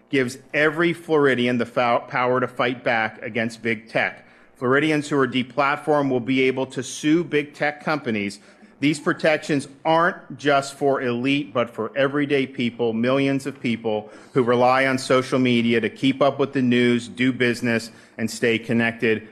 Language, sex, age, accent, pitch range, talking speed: English, male, 40-59, American, 115-140 Hz, 160 wpm